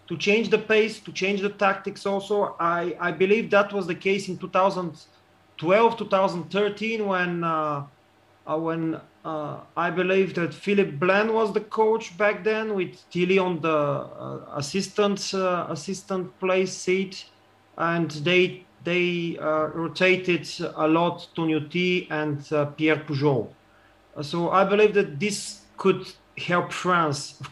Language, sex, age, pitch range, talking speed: English, male, 30-49, 155-195 Hz, 140 wpm